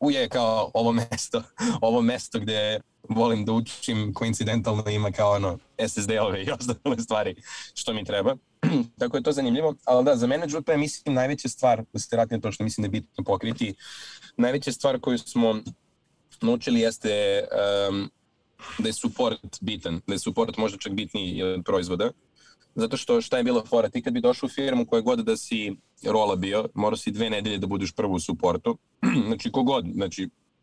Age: 20-39